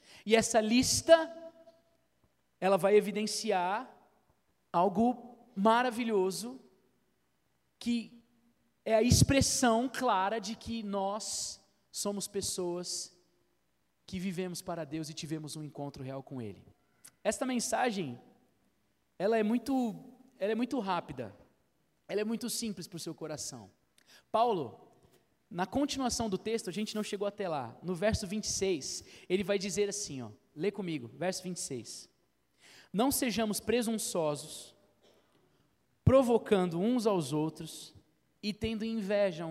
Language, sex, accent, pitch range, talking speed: Portuguese, male, Brazilian, 180-240 Hz, 115 wpm